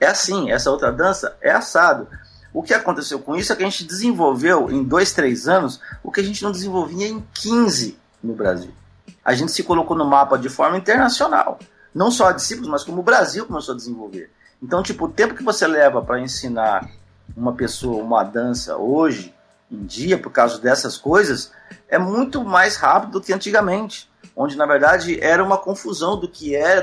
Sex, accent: male, Brazilian